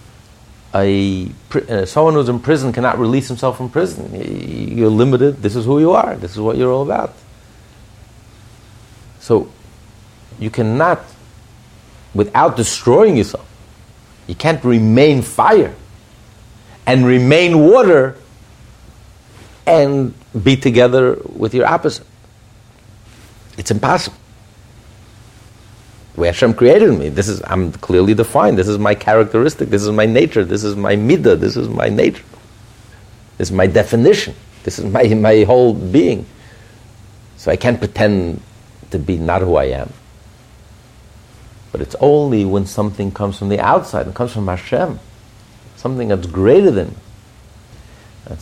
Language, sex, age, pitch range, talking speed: English, male, 50-69, 105-120 Hz, 135 wpm